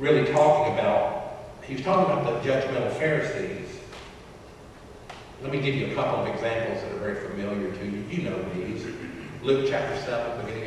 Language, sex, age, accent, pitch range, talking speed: English, male, 50-69, American, 115-150 Hz, 175 wpm